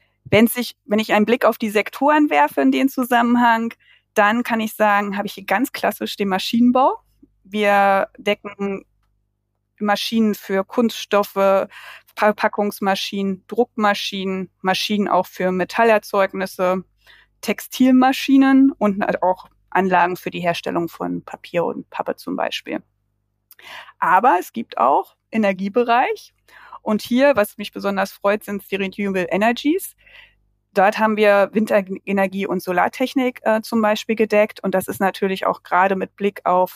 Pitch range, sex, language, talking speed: 185-220 Hz, female, German, 135 wpm